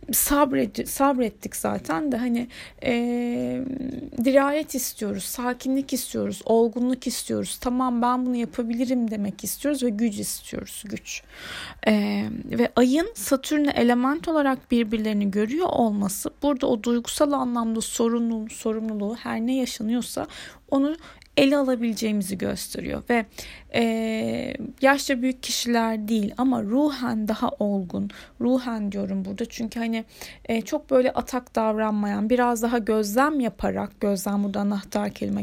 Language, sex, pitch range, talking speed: Turkish, female, 220-265 Hz, 125 wpm